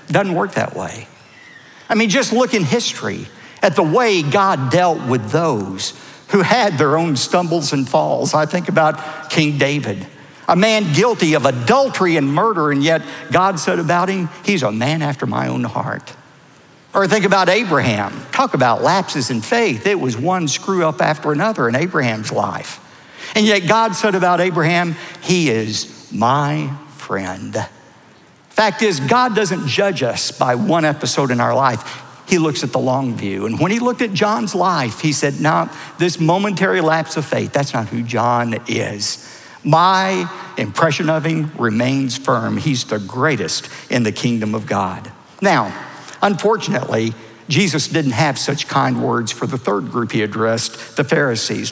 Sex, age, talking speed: male, 60-79, 170 wpm